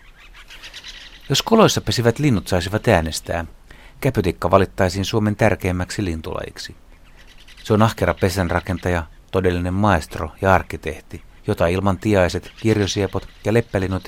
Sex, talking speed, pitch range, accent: male, 105 wpm, 85-110 Hz, native